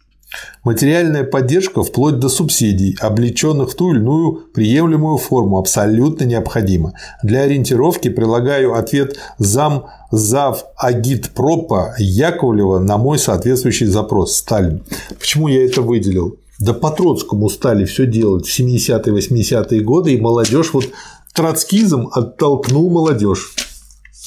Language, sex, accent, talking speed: Russian, male, native, 110 wpm